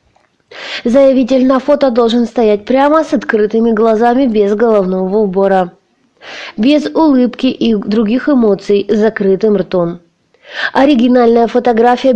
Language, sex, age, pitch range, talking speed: Russian, female, 20-39, 205-250 Hz, 110 wpm